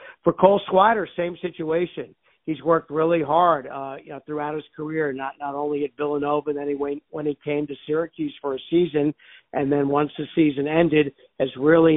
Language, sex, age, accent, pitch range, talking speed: English, male, 50-69, American, 145-165 Hz, 200 wpm